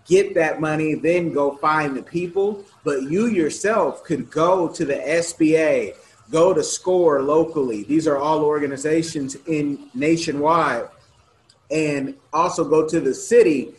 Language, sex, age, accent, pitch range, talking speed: English, male, 30-49, American, 145-200 Hz, 140 wpm